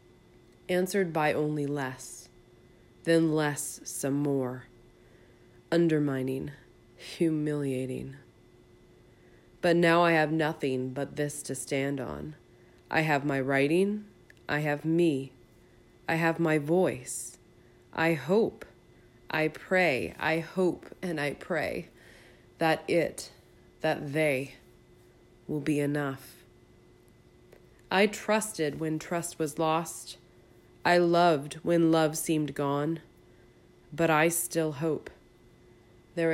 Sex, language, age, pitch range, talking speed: female, English, 30-49, 135-165 Hz, 105 wpm